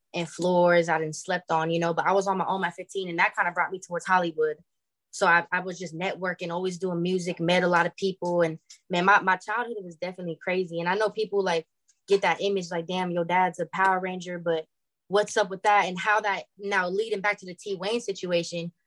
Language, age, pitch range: English, 20-39, 170-190 Hz